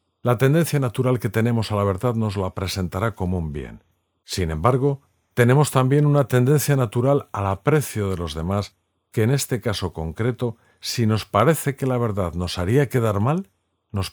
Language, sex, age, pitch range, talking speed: Spanish, male, 50-69, 90-125 Hz, 180 wpm